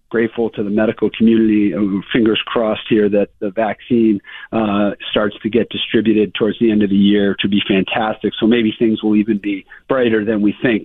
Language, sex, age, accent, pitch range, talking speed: English, male, 40-59, American, 100-115 Hz, 200 wpm